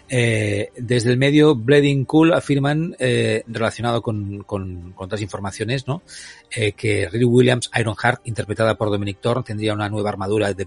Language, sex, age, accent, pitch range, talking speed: Spanish, male, 40-59, Spanish, 105-135 Hz, 165 wpm